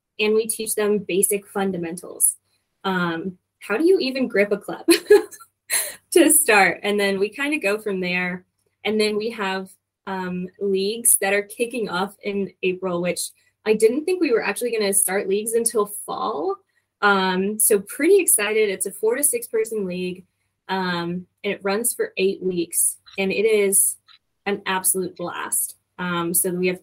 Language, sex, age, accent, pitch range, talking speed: English, female, 10-29, American, 185-220 Hz, 170 wpm